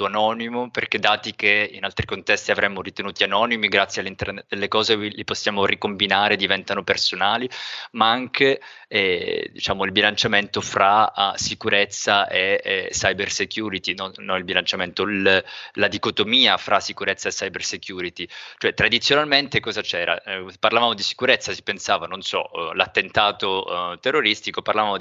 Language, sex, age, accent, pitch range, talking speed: Italian, male, 20-39, native, 95-125 Hz, 140 wpm